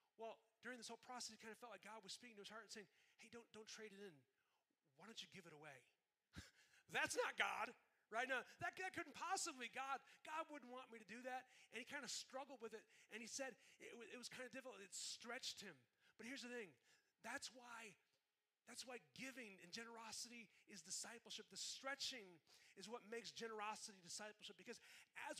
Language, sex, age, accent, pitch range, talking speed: English, male, 30-49, American, 195-245 Hz, 210 wpm